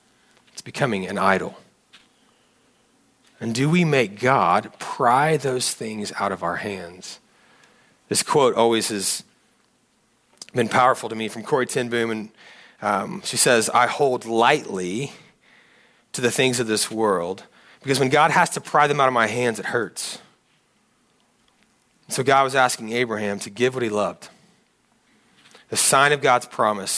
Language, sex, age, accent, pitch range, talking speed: English, male, 30-49, American, 110-140 Hz, 150 wpm